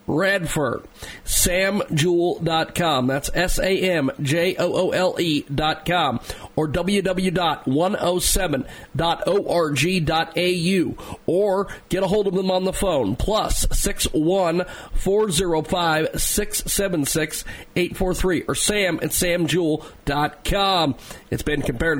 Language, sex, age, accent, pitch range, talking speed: English, male, 40-59, American, 150-185 Hz, 95 wpm